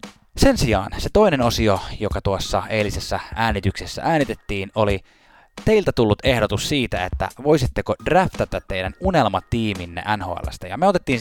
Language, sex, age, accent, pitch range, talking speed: Finnish, male, 20-39, native, 95-120 Hz, 130 wpm